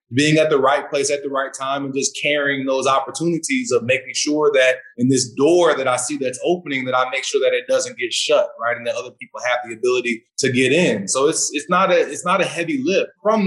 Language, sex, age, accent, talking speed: English, male, 20-39, American, 255 wpm